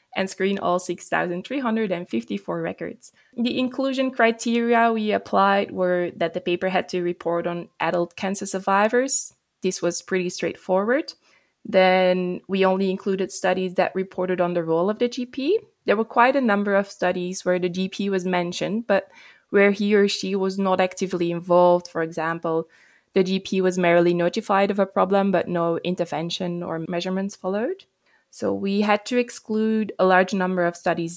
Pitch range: 175-200 Hz